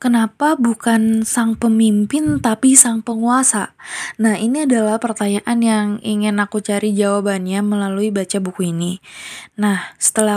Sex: female